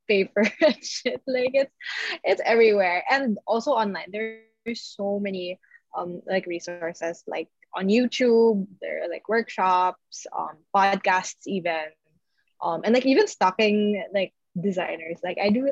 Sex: female